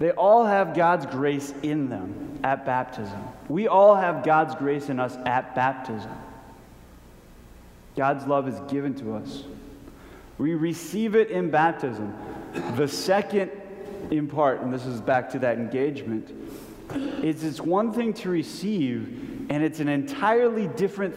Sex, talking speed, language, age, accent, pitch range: male, 145 wpm, English, 30-49, American, 115-160 Hz